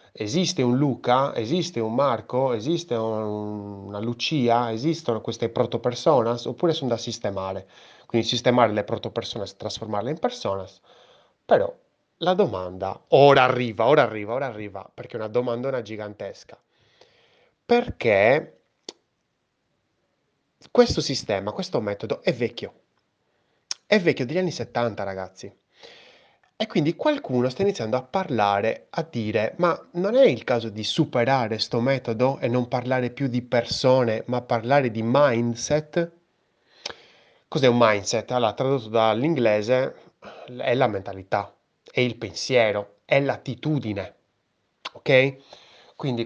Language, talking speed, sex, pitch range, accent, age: Italian, 125 wpm, male, 110-135 Hz, native, 30-49